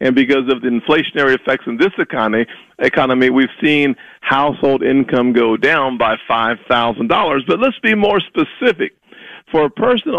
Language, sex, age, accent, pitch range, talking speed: English, male, 40-59, American, 145-205 Hz, 155 wpm